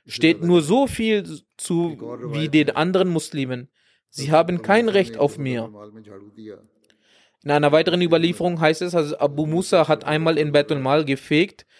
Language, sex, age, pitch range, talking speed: German, male, 20-39, 135-180 Hz, 140 wpm